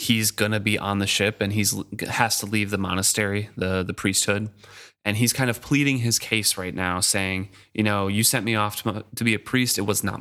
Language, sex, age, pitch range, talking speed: English, male, 20-39, 100-130 Hz, 240 wpm